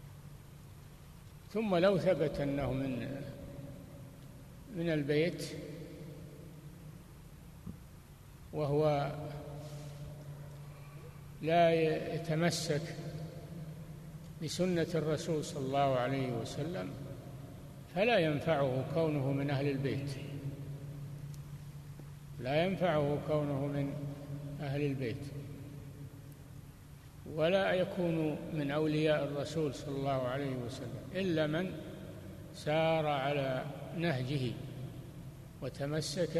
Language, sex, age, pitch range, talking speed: Arabic, male, 60-79, 140-160 Hz, 70 wpm